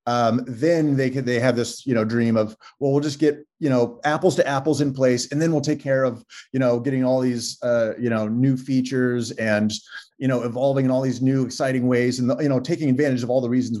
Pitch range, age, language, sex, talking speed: 115-135 Hz, 30-49, English, male, 250 wpm